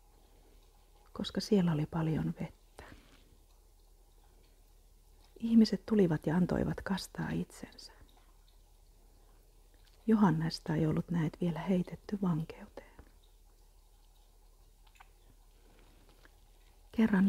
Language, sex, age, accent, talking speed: Finnish, female, 40-59, native, 65 wpm